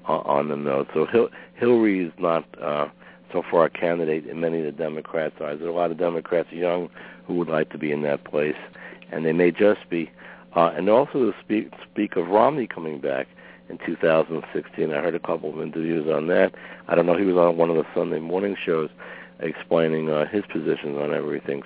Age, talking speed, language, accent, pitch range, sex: 60-79, 215 wpm, English, American, 80-95 Hz, male